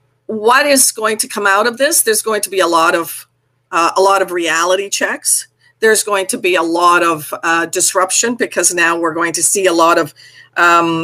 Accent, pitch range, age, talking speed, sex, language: American, 175-220 Hz, 50-69, 215 wpm, female, English